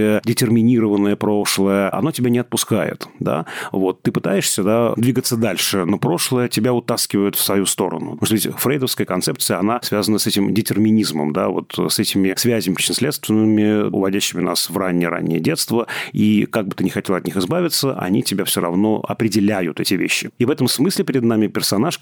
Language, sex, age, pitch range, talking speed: Russian, male, 30-49, 95-115 Hz, 170 wpm